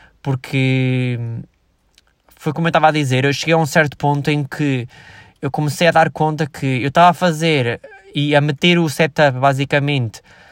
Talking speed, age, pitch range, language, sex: 175 wpm, 20-39, 130-155 Hz, Portuguese, male